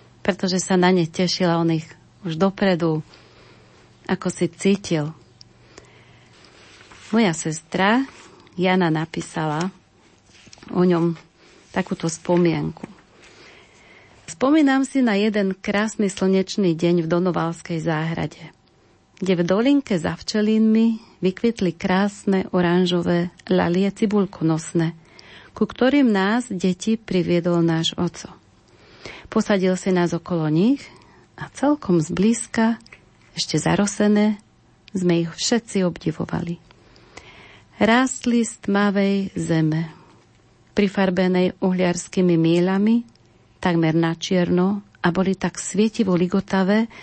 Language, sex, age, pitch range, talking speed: Slovak, female, 40-59, 170-205 Hz, 95 wpm